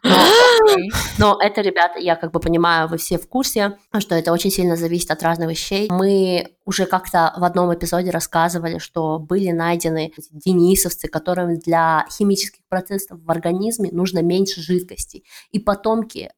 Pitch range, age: 170-215 Hz, 20-39